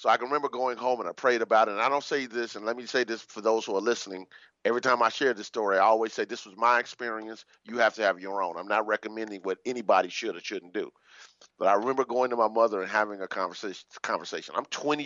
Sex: male